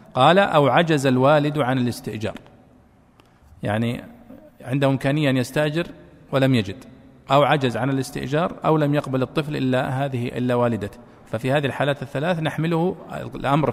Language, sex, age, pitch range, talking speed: Arabic, male, 40-59, 130-170 Hz, 135 wpm